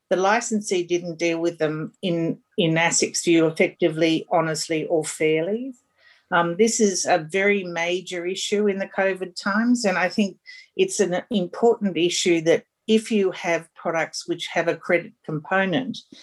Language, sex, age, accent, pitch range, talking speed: English, female, 50-69, Australian, 165-210 Hz, 155 wpm